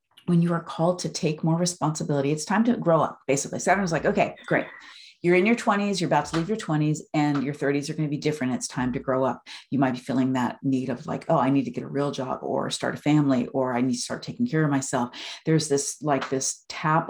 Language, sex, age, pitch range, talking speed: English, female, 40-59, 135-170 Hz, 265 wpm